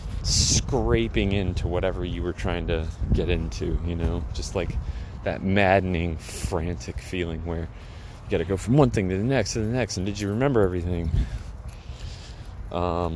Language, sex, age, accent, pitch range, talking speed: English, male, 30-49, American, 85-100 Hz, 165 wpm